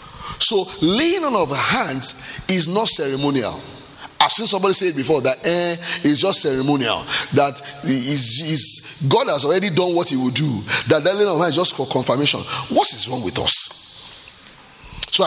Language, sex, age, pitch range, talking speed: English, male, 30-49, 130-215 Hz, 180 wpm